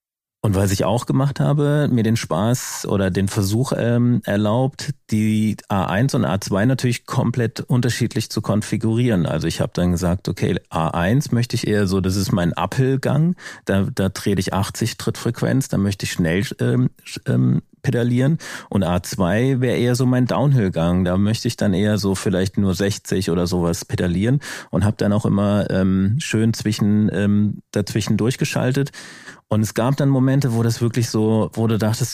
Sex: male